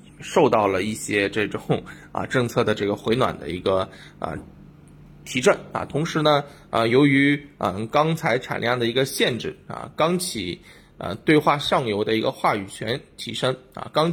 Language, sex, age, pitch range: Chinese, male, 20-39, 105-140 Hz